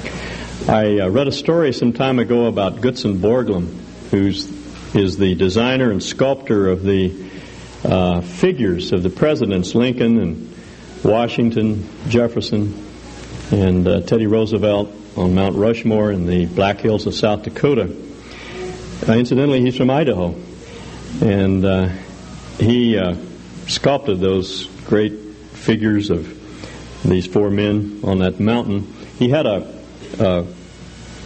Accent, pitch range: American, 95-120 Hz